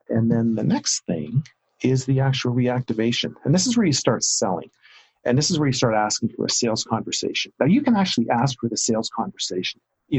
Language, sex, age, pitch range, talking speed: English, male, 50-69, 115-140 Hz, 220 wpm